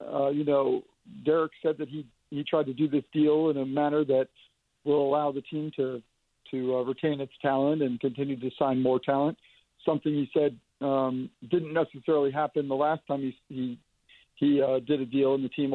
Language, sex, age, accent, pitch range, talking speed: English, male, 50-69, American, 135-160 Hz, 200 wpm